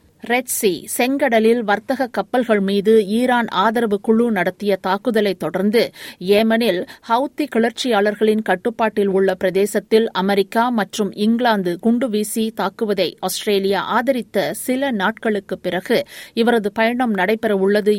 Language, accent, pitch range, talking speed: Tamil, native, 195-235 Hz, 100 wpm